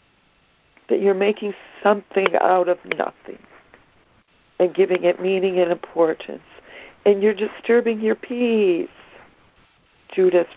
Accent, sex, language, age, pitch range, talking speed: American, female, English, 60-79, 185-235 Hz, 110 wpm